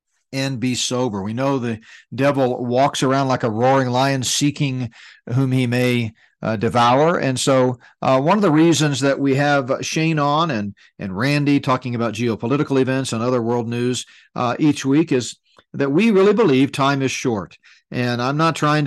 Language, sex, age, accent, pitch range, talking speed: English, male, 50-69, American, 120-140 Hz, 180 wpm